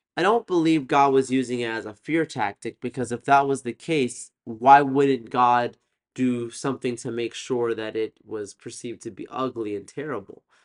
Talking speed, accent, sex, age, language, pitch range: 190 wpm, American, male, 30-49, English, 110-135 Hz